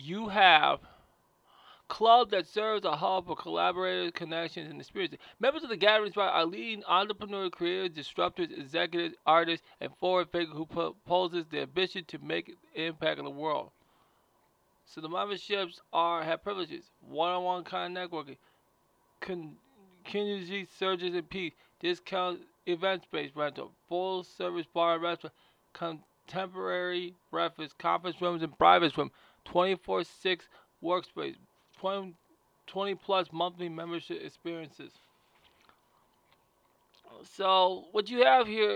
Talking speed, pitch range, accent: 120 wpm, 165-195 Hz, American